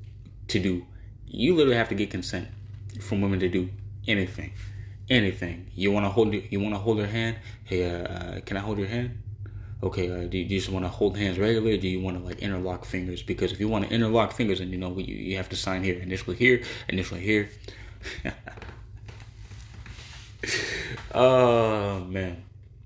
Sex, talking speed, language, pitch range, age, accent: male, 195 wpm, English, 95-110 Hz, 20-39, American